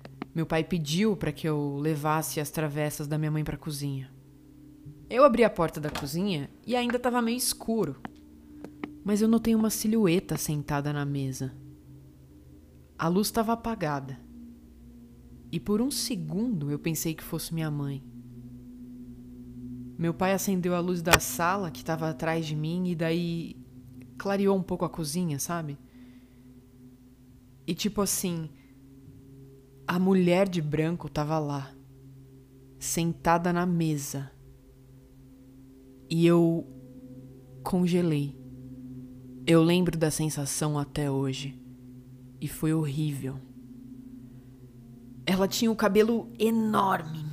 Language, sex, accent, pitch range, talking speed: Portuguese, female, Brazilian, 130-175 Hz, 125 wpm